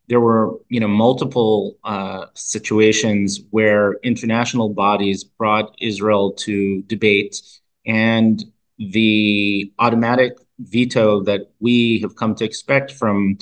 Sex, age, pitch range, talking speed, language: male, 30-49, 105-120 Hz, 110 wpm, English